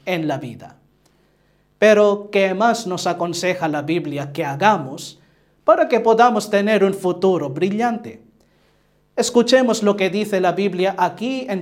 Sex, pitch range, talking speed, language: male, 175-220 Hz, 140 wpm, English